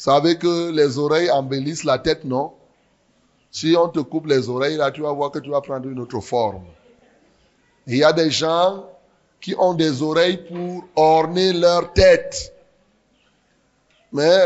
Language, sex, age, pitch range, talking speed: French, male, 30-49, 145-180 Hz, 170 wpm